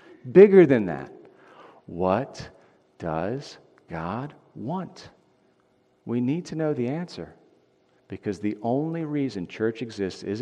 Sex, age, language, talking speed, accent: male, 40-59, English, 115 wpm, American